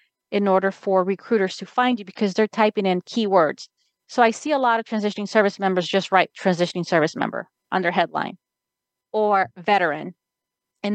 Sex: female